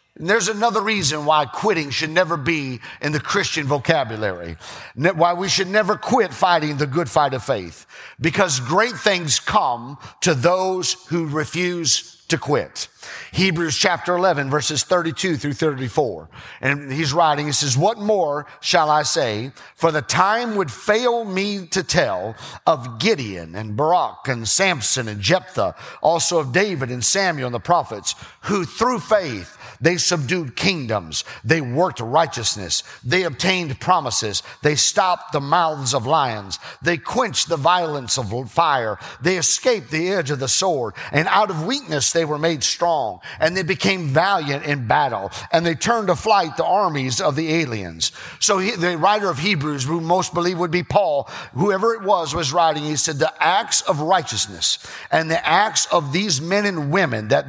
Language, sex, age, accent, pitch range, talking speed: English, male, 50-69, American, 135-180 Hz, 170 wpm